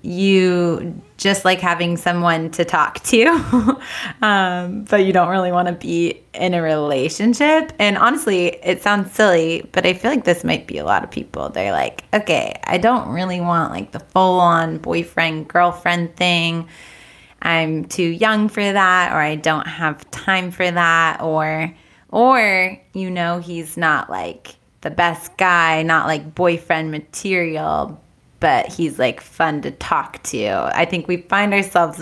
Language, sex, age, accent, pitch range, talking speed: English, female, 20-39, American, 165-205 Hz, 160 wpm